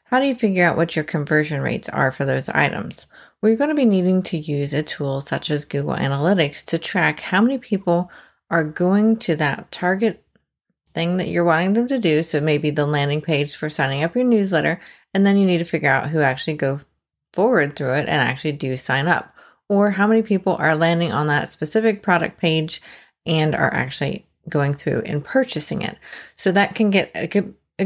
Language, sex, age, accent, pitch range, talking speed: English, female, 30-49, American, 150-195 Hz, 215 wpm